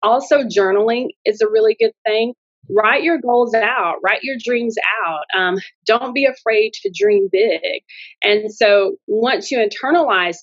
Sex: female